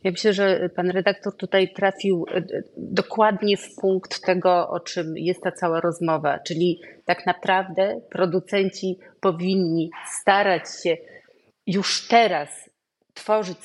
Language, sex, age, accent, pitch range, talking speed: Polish, female, 30-49, native, 170-200 Hz, 120 wpm